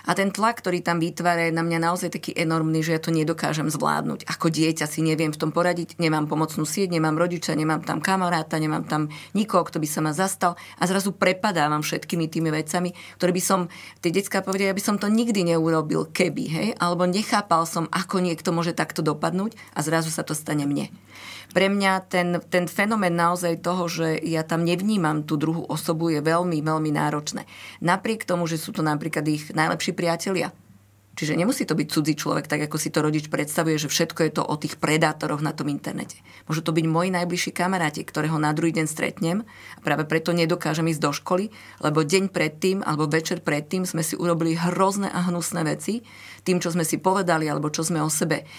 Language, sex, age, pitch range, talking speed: Slovak, female, 30-49, 155-180 Hz, 205 wpm